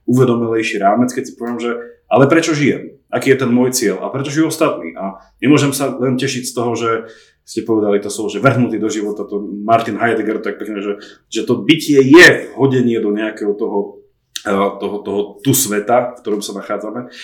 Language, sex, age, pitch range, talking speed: Slovak, male, 30-49, 115-150 Hz, 195 wpm